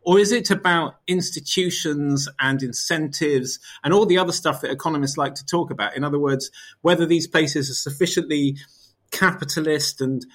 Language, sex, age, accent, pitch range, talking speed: English, male, 30-49, British, 135-170 Hz, 160 wpm